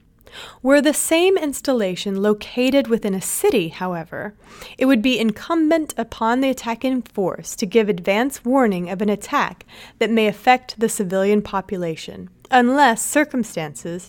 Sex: female